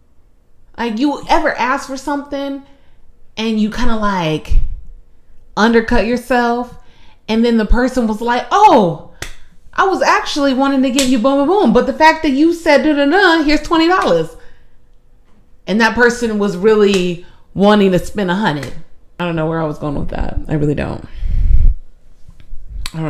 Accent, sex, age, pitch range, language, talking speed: American, female, 30-49, 155-235 Hz, English, 170 wpm